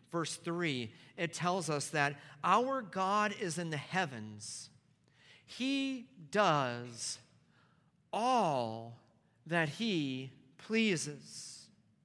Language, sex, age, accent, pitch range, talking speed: English, male, 40-59, American, 145-195 Hz, 90 wpm